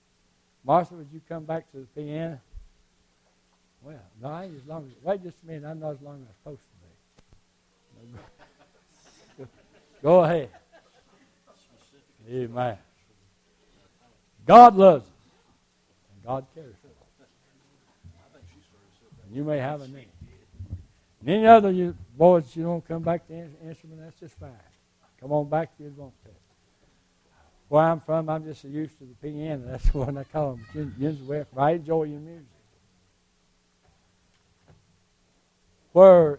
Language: English